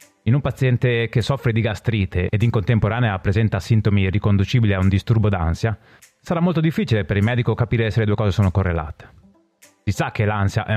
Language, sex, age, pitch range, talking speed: Italian, male, 30-49, 95-130 Hz, 195 wpm